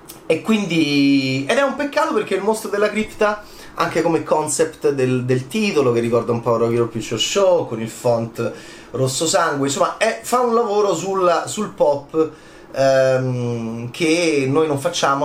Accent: native